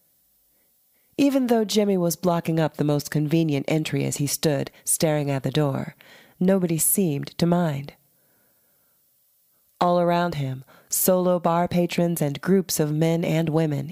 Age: 30-49